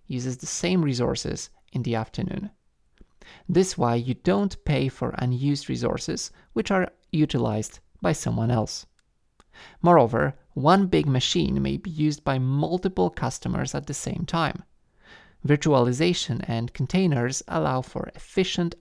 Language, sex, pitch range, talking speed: English, male, 125-175 Hz, 130 wpm